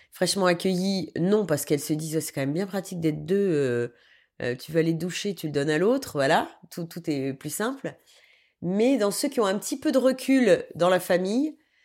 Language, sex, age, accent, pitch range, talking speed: French, female, 30-49, French, 150-185 Hz, 230 wpm